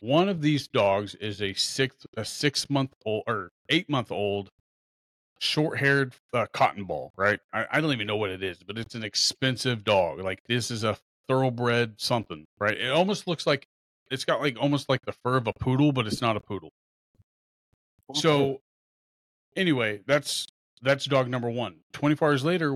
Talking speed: 170 wpm